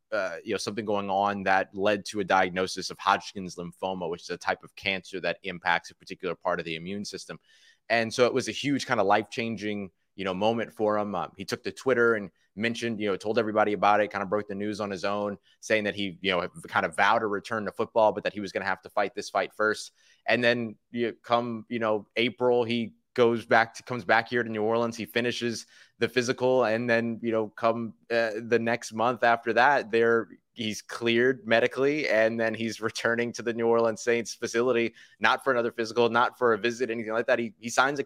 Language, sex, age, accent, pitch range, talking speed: English, male, 30-49, American, 105-120 Hz, 240 wpm